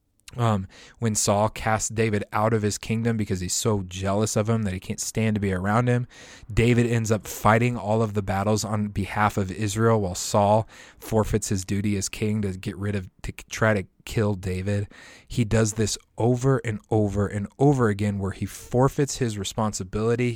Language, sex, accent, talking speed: English, male, American, 190 wpm